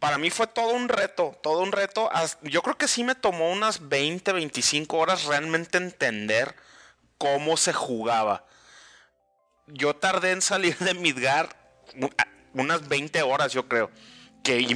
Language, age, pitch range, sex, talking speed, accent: Spanish, 30-49, 125-175 Hz, male, 145 wpm, Mexican